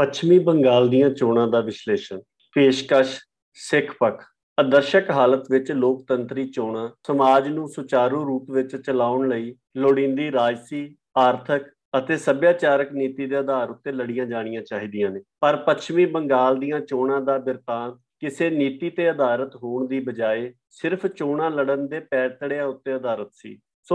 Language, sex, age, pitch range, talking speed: Punjabi, male, 50-69, 130-145 Hz, 105 wpm